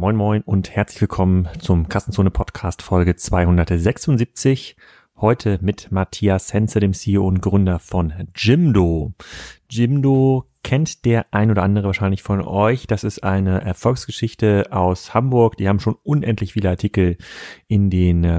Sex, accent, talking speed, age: male, German, 135 wpm, 30-49